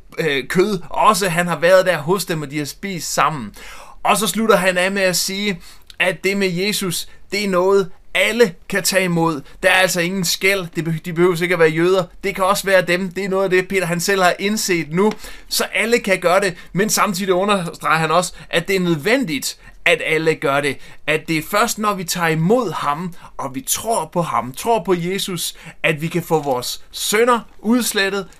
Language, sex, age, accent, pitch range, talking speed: Danish, male, 30-49, native, 165-200 Hz, 215 wpm